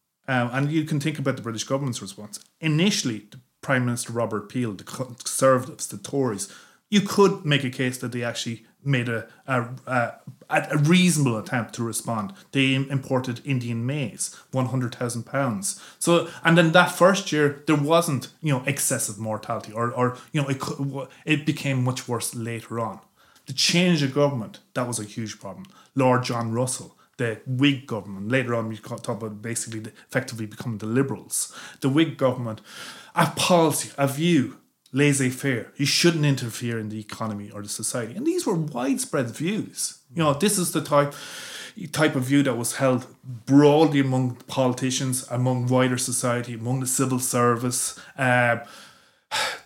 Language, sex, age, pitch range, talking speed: English, male, 30-49, 120-150 Hz, 165 wpm